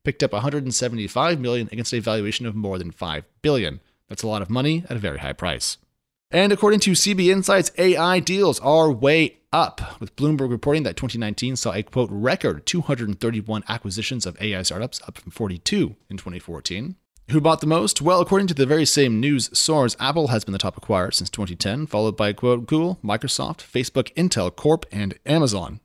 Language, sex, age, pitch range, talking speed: English, male, 30-49, 105-150 Hz, 190 wpm